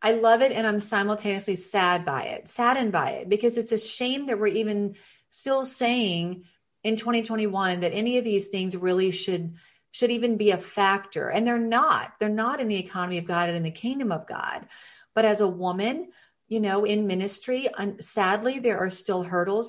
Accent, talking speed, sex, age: American, 195 wpm, female, 40-59